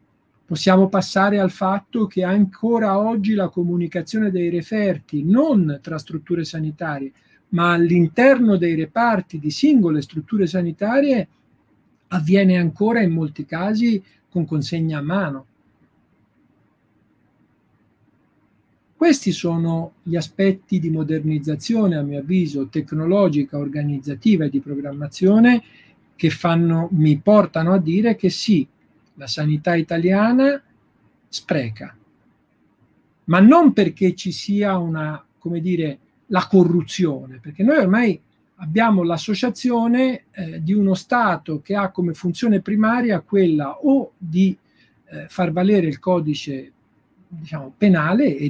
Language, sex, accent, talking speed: Italian, male, native, 115 wpm